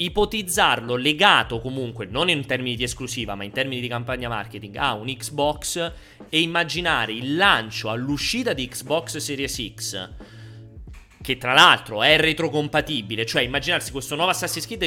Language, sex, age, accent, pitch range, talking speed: Italian, male, 30-49, native, 115-155 Hz, 150 wpm